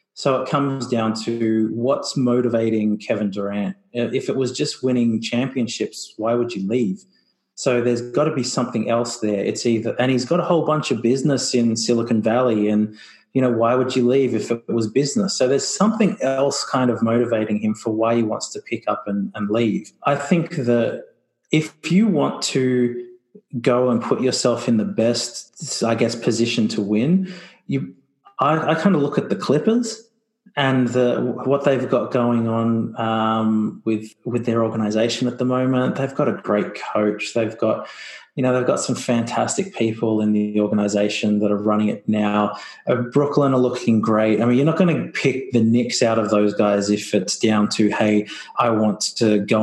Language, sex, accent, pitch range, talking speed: English, male, Australian, 110-130 Hz, 195 wpm